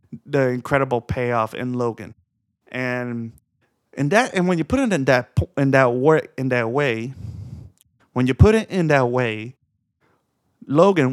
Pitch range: 120-145 Hz